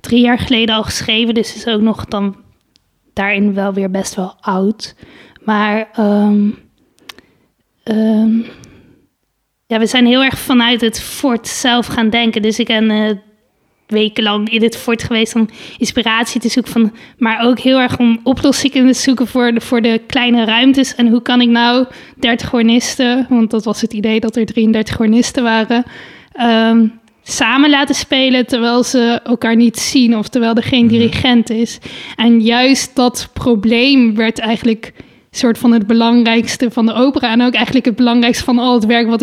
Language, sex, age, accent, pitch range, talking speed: Dutch, female, 20-39, Dutch, 225-245 Hz, 175 wpm